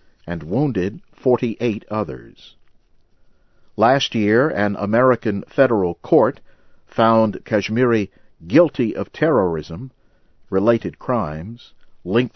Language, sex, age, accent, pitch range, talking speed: English, male, 50-69, American, 90-120 Hz, 85 wpm